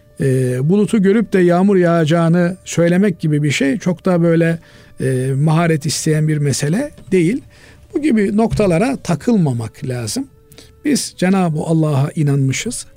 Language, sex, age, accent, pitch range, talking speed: Turkish, male, 50-69, native, 135-180 Hz, 120 wpm